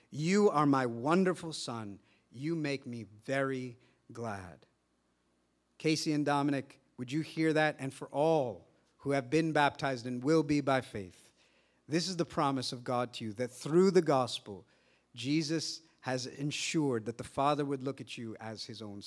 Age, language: 50-69, English